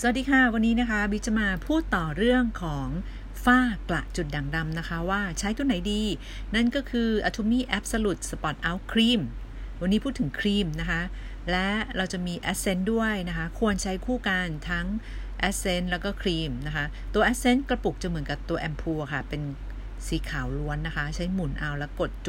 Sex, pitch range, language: female, 155-205 Hz, Thai